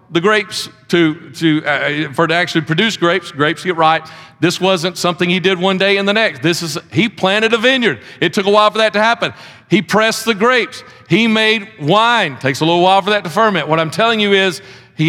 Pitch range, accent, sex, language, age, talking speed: 170-220 Hz, American, male, English, 50-69, 230 wpm